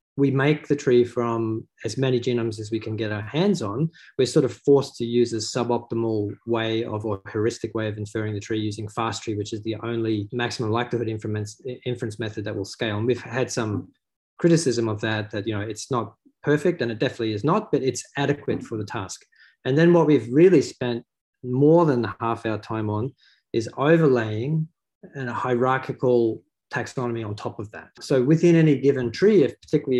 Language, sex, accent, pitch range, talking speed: English, male, Australian, 110-135 Hz, 200 wpm